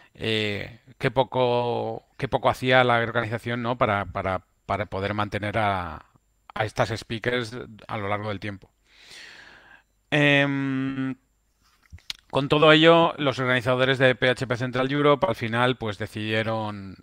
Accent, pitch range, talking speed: Spanish, 105-130 Hz, 130 wpm